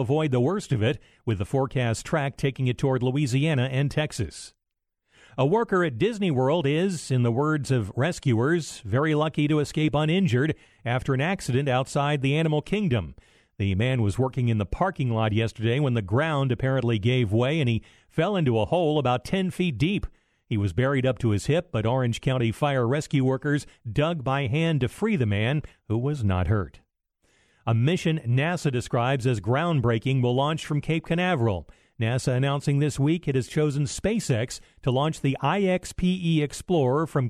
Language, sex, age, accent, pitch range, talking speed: English, male, 50-69, American, 120-155 Hz, 180 wpm